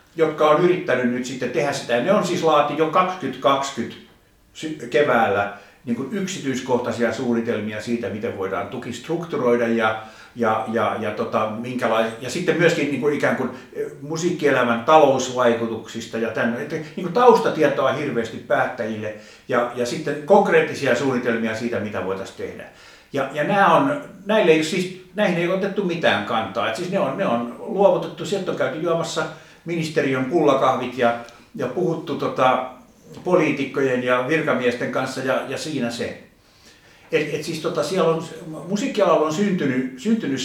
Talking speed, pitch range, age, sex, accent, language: 145 wpm, 115-165 Hz, 60-79, male, native, Finnish